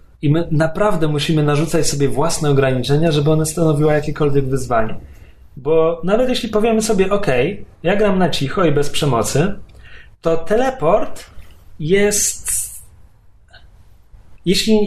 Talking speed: 120 wpm